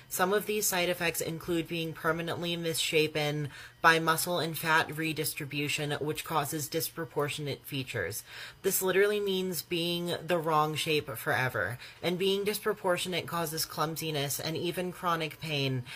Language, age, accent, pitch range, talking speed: English, 30-49, American, 140-170 Hz, 130 wpm